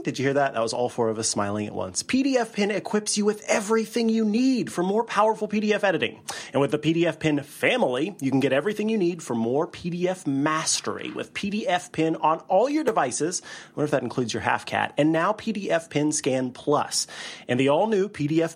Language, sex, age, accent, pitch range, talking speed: English, male, 30-49, American, 145-210 Hz, 215 wpm